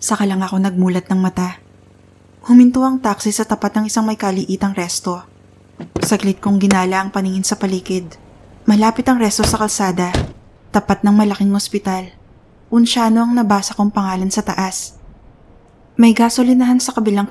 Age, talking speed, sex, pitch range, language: 20-39, 150 wpm, female, 185-205 Hz, Filipino